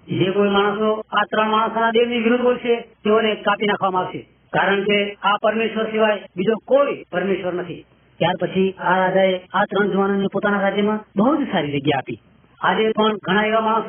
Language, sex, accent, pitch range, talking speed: Hindi, female, native, 200-230 Hz, 110 wpm